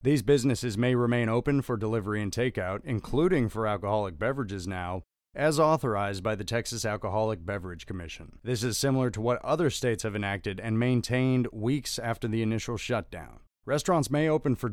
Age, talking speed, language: 30-49, 170 wpm, English